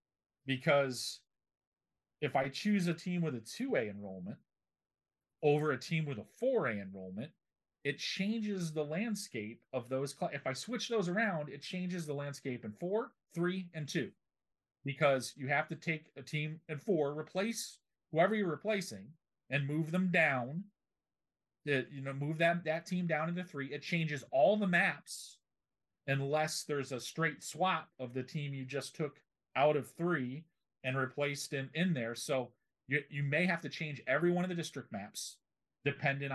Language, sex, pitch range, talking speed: English, male, 130-170 Hz, 170 wpm